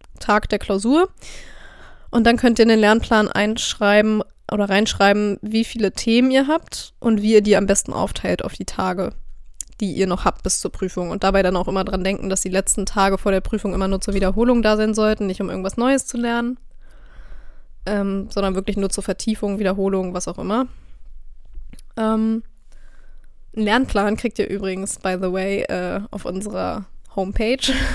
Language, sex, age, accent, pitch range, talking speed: German, female, 20-39, German, 200-225 Hz, 185 wpm